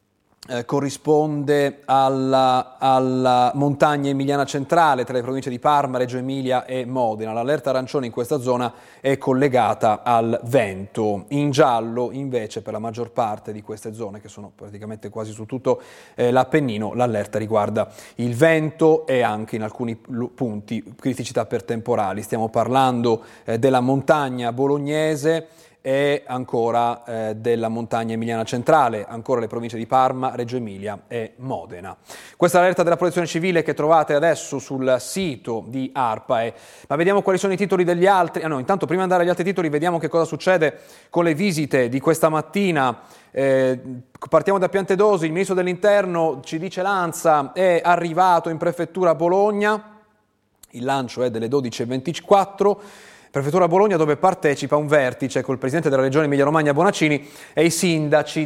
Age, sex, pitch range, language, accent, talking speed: 30-49, male, 120-160 Hz, Italian, native, 155 wpm